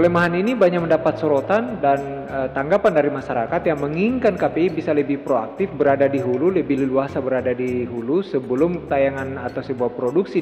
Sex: male